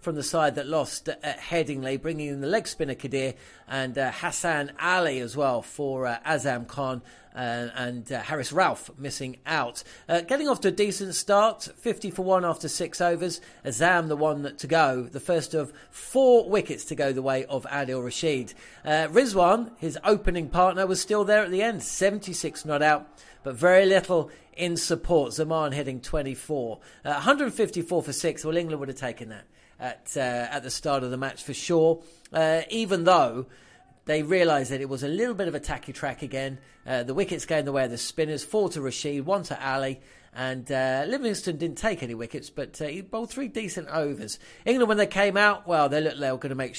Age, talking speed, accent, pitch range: 40-59, 205 wpm, British, 135-180 Hz